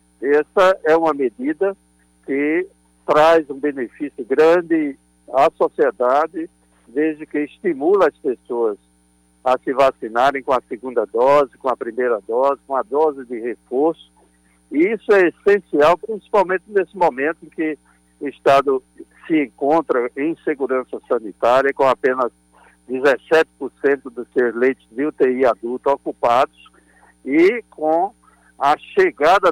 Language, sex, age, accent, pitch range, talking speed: Portuguese, male, 60-79, Brazilian, 115-170 Hz, 125 wpm